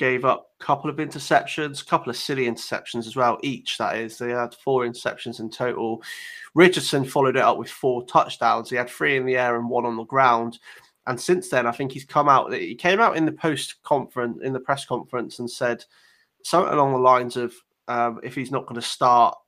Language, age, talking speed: English, 20-39, 225 wpm